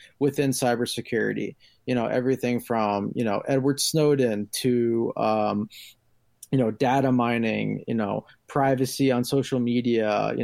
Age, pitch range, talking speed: 30-49, 115-135 Hz, 130 wpm